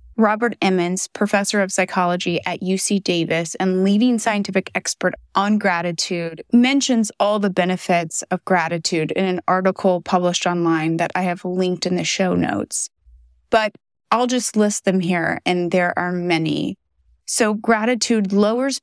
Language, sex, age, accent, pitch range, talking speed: English, female, 20-39, American, 175-215 Hz, 145 wpm